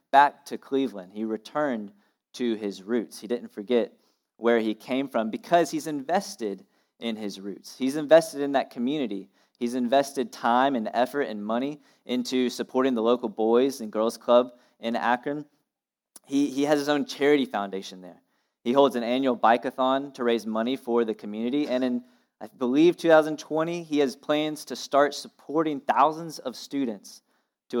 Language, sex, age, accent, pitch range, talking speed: English, male, 20-39, American, 110-145 Hz, 165 wpm